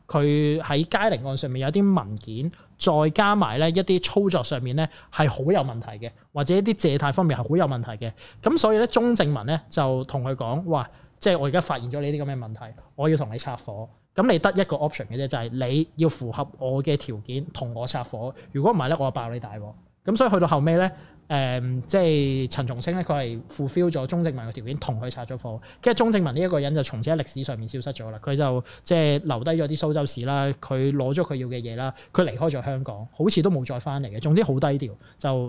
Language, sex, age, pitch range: Chinese, male, 20-39, 130-165 Hz